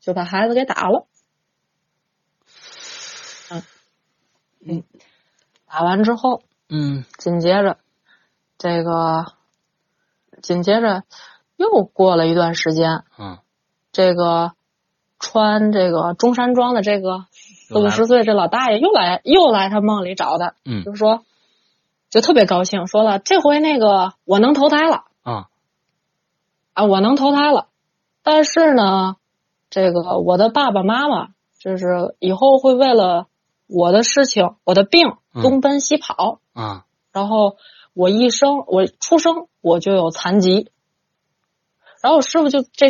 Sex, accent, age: female, native, 30-49